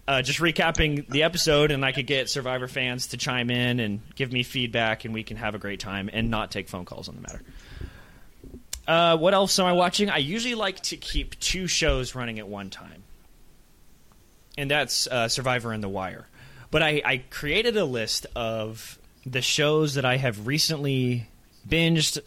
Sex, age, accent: male, 30-49, American